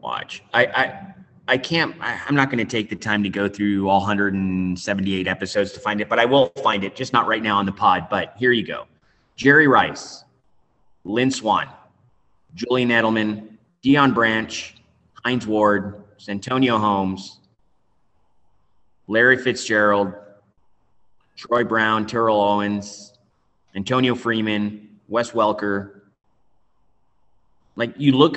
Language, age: English, 30-49